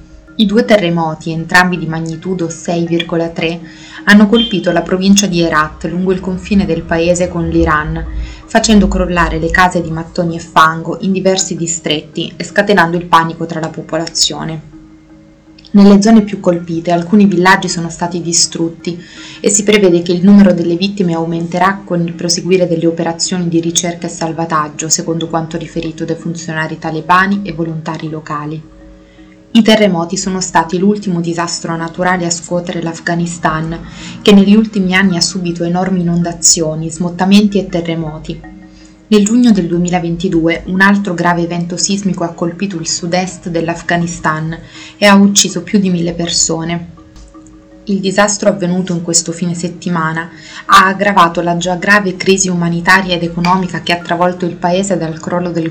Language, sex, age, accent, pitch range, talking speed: Italian, female, 20-39, native, 165-185 Hz, 150 wpm